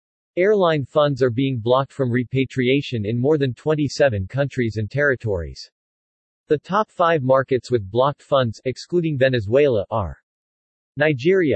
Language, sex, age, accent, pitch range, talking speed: English, male, 40-59, American, 120-150 Hz, 130 wpm